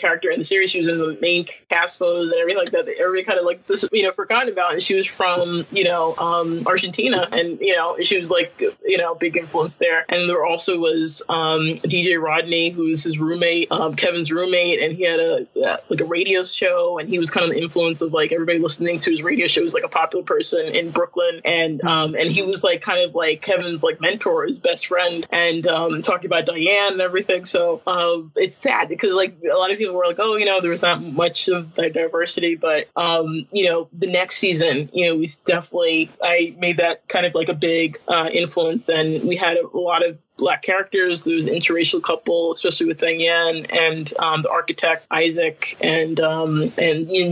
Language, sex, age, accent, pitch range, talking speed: English, male, 20-39, American, 165-185 Hz, 225 wpm